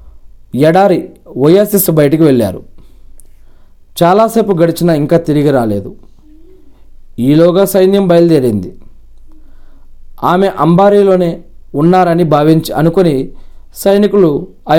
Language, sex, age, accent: Telugu, male, 40-59, native